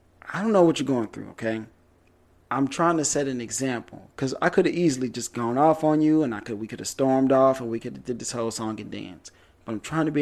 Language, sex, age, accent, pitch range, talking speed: English, male, 30-49, American, 90-135 Hz, 275 wpm